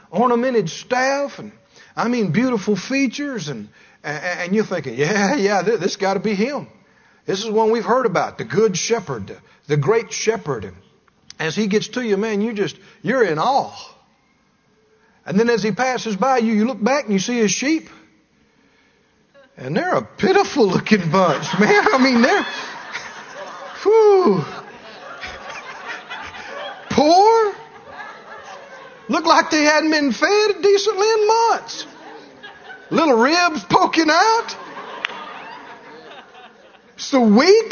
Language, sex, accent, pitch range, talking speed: English, male, American, 220-325 Hz, 135 wpm